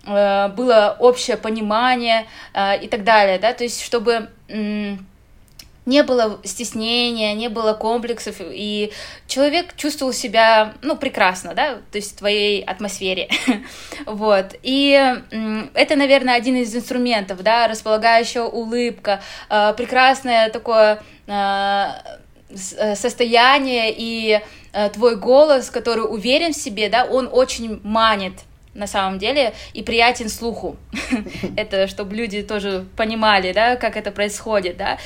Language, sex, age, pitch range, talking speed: Russian, female, 20-39, 205-250 Hz, 110 wpm